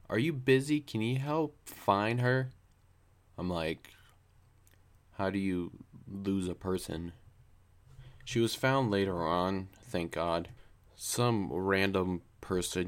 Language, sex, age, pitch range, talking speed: English, male, 20-39, 90-115 Hz, 120 wpm